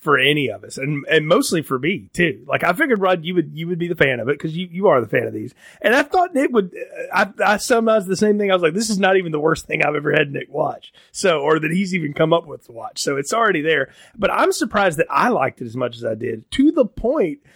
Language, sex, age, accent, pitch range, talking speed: English, male, 30-49, American, 150-215 Hz, 295 wpm